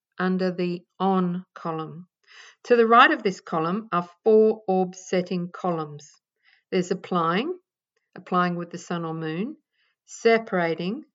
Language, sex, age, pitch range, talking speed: English, female, 50-69, 175-230 Hz, 130 wpm